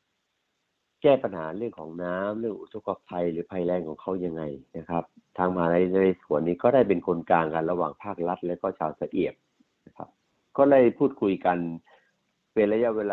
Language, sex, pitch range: Thai, male, 85-105 Hz